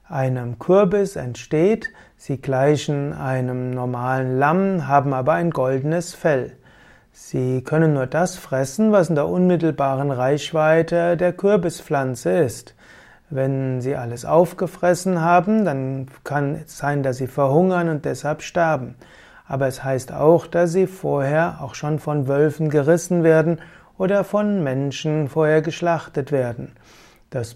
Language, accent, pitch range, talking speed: German, German, 135-170 Hz, 135 wpm